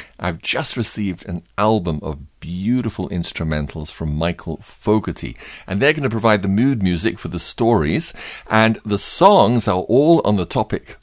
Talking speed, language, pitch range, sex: 165 wpm, English, 80-110 Hz, male